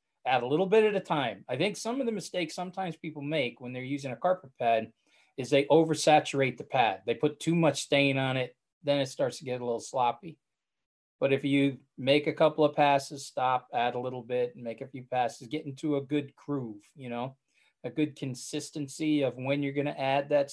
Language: English